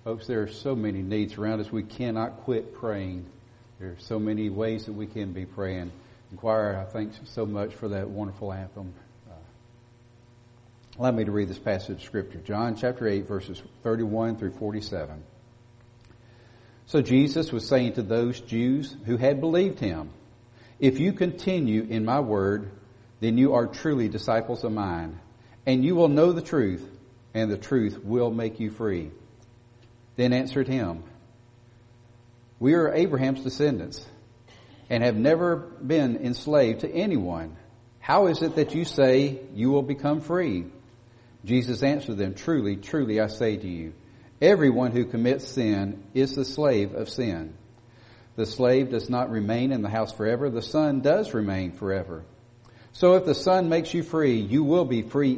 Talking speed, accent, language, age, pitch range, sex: 165 wpm, American, English, 50-69, 105-130 Hz, male